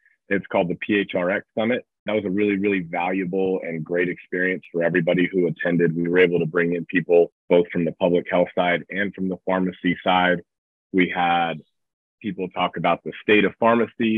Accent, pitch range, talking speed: American, 85-100 Hz, 190 wpm